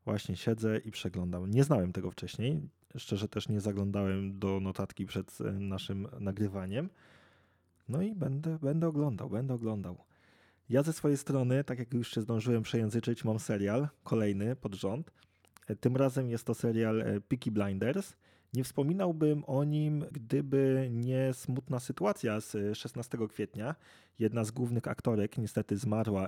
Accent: native